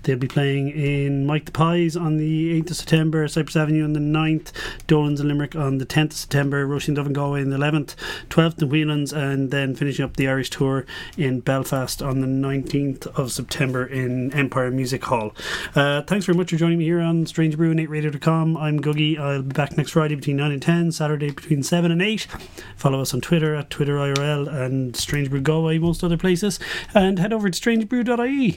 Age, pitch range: 30-49, 135-160 Hz